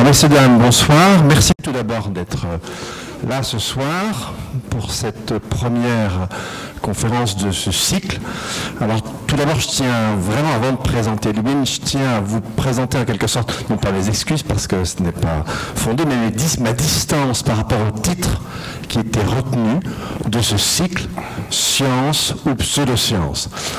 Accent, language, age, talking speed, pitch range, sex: French, French, 60-79, 155 wpm, 110-140 Hz, male